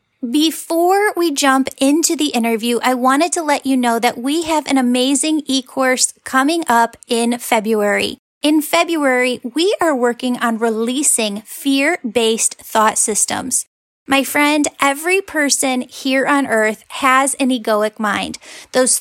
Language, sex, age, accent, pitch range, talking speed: English, female, 10-29, American, 235-280 Hz, 140 wpm